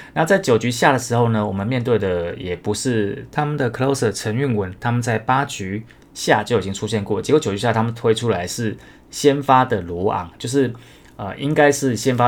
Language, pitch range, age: Chinese, 105-135 Hz, 20-39